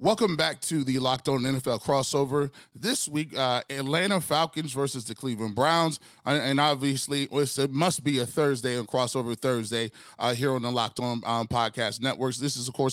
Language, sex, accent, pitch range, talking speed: English, male, American, 130-155 Hz, 185 wpm